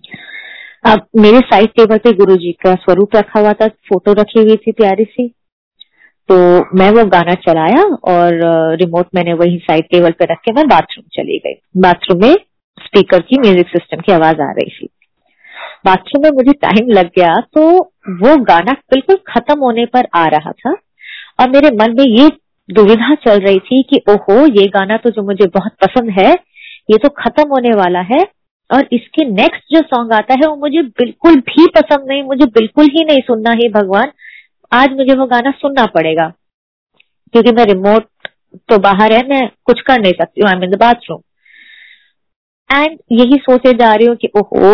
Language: Hindi